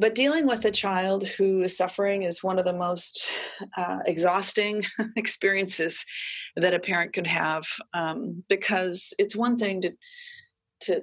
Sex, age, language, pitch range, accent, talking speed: female, 30-49, English, 180-235 Hz, American, 145 wpm